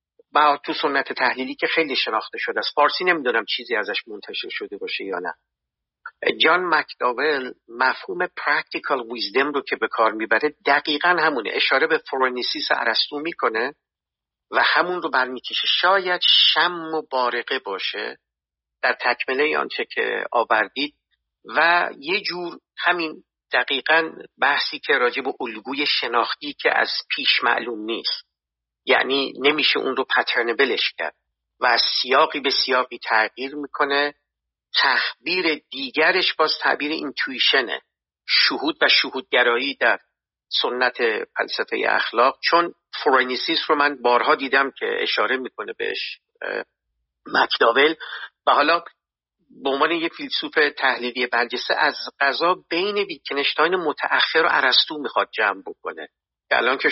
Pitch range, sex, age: 125-190 Hz, male, 50-69